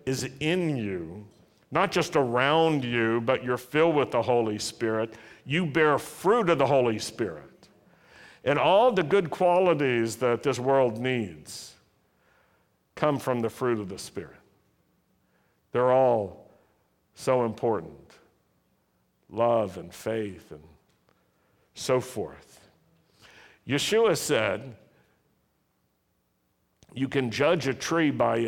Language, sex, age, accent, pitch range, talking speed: English, male, 60-79, American, 115-160 Hz, 115 wpm